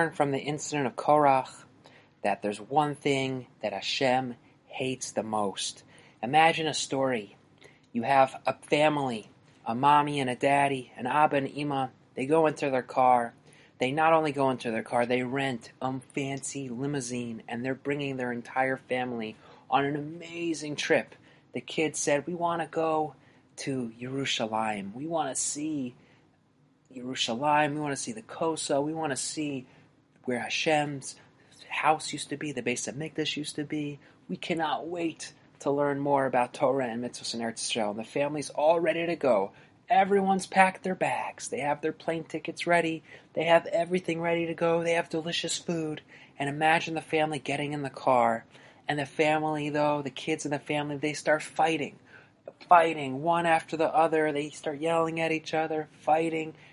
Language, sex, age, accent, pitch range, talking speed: English, male, 30-49, American, 130-160 Hz, 175 wpm